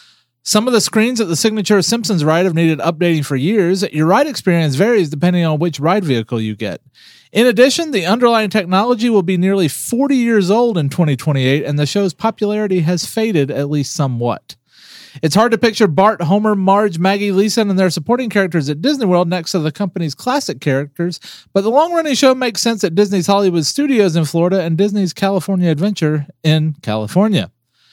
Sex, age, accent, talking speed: male, 30-49, American, 185 wpm